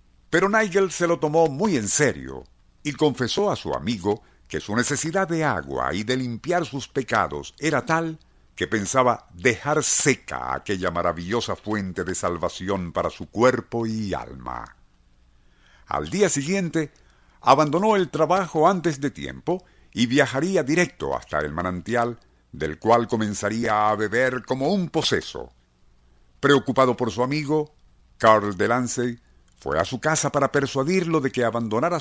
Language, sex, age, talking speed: Spanish, male, 60-79, 145 wpm